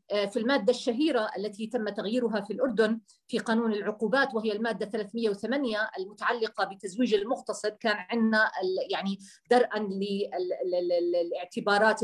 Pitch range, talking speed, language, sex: 205-250 Hz, 110 wpm, Arabic, female